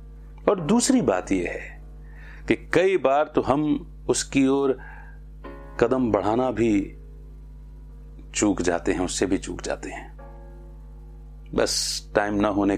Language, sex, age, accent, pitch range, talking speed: Hindi, male, 40-59, native, 75-120 Hz, 125 wpm